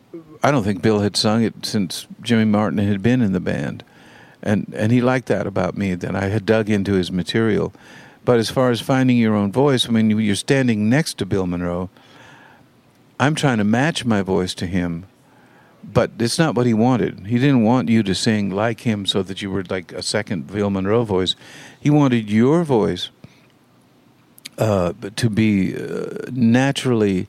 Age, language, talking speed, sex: 50-69, English, 190 wpm, male